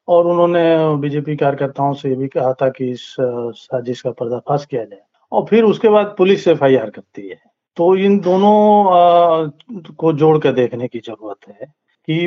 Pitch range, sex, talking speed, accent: 135-180 Hz, male, 170 wpm, native